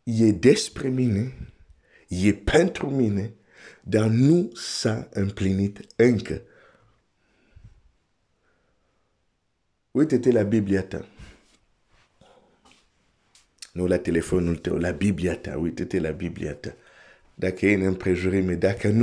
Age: 50-69